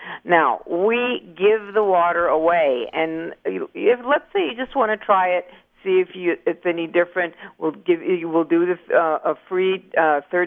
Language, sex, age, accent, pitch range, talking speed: English, female, 50-69, American, 155-185 Hz, 190 wpm